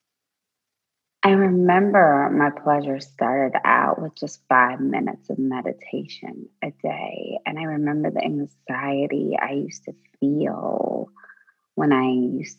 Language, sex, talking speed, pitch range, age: English, female, 125 wpm, 135-160 Hz, 30-49